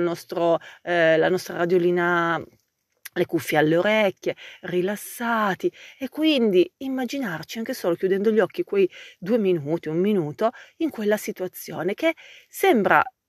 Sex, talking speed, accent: female, 125 wpm, native